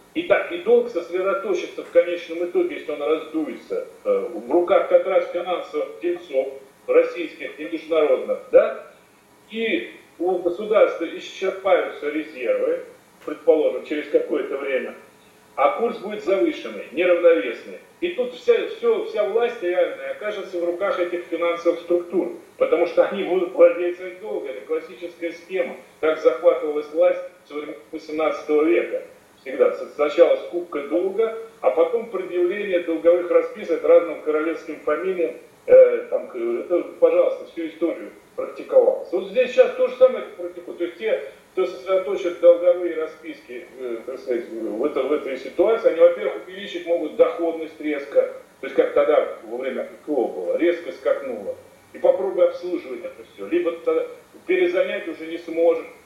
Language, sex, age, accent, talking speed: Russian, male, 40-59, native, 135 wpm